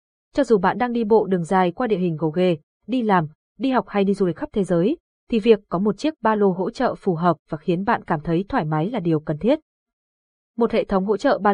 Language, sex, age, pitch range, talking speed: Vietnamese, female, 20-39, 175-235 Hz, 270 wpm